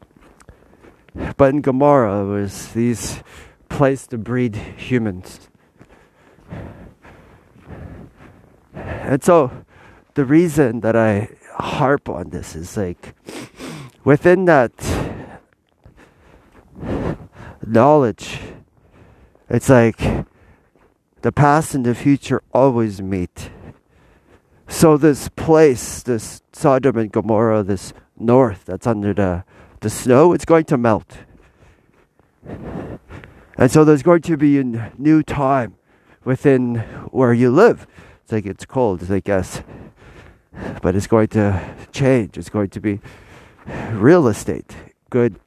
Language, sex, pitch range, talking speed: English, male, 100-135 Hz, 110 wpm